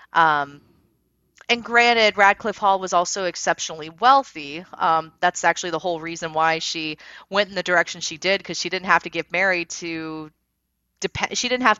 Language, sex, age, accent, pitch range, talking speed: English, female, 30-49, American, 160-200 Hz, 180 wpm